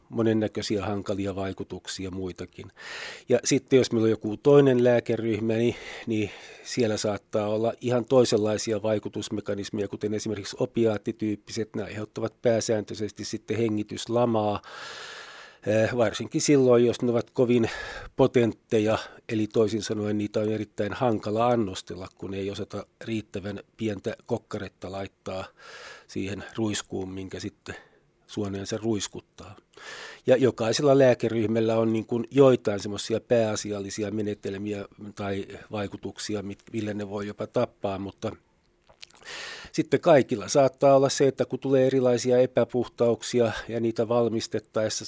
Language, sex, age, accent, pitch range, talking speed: Finnish, male, 40-59, native, 105-120 Hz, 120 wpm